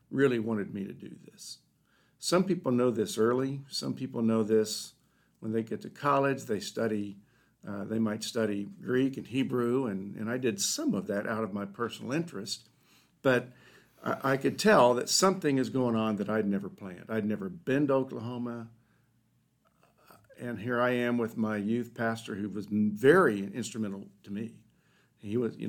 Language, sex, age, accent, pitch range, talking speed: English, male, 60-79, American, 110-125 Hz, 180 wpm